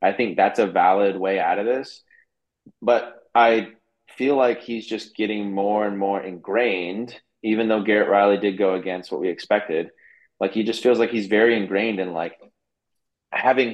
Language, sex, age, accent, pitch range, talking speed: English, male, 20-39, American, 100-115 Hz, 180 wpm